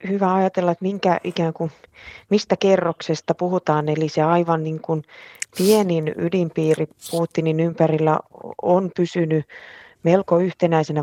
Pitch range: 150-170 Hz